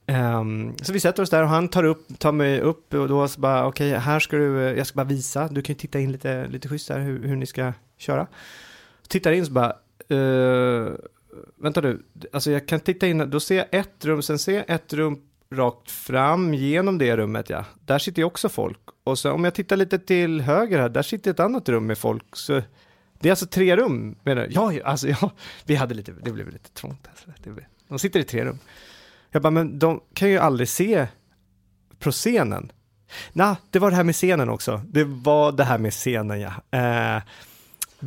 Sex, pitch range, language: male, 125-165 Hz, English